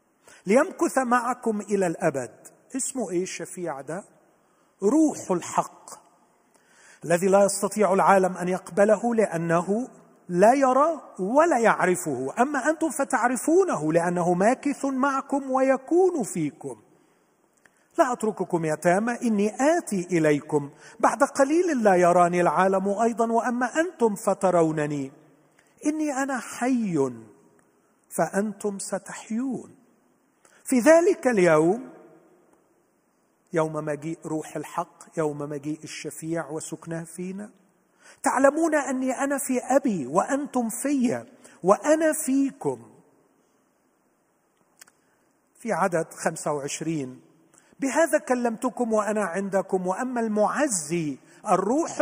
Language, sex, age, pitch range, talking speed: Arabic, male, 40-59, 175-265 Hz, 95 wpm